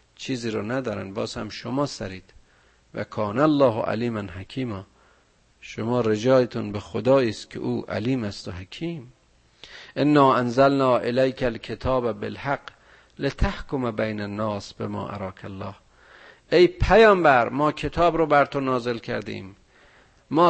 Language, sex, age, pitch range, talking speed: Persian, male, 50-69, 105-140 Hz, 130 wpm